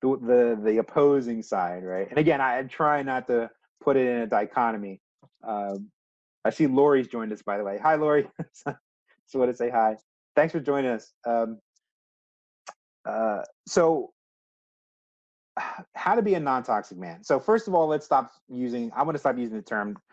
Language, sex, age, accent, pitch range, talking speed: English, male, 30-49, American, 110-140 Hz, 180 wpm